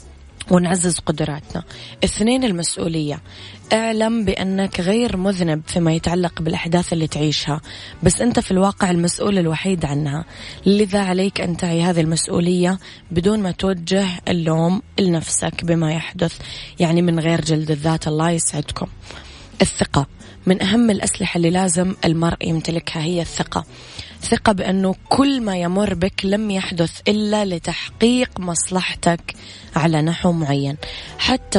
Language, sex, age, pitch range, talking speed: Arabic, female, 20-39, 160-190 Hz, 125 wpm